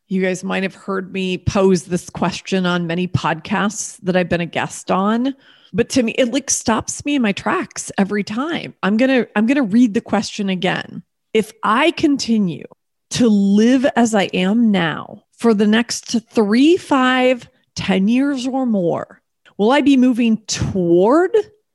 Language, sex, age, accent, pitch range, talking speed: English, female, 30-49, American, 190-255 Hz, 175 wpm